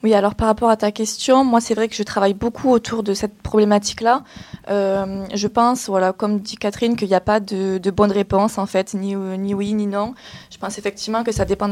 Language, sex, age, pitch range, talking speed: French, female, 20-39, 195-230 Hz, 235 wpm